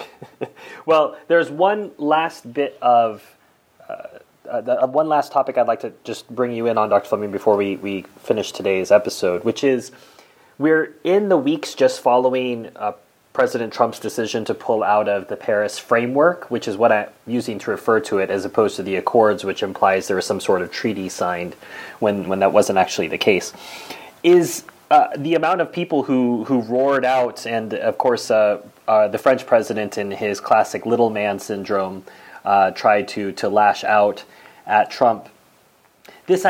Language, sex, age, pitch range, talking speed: English, male, 30-49, 105-145 Hz, 180 wpm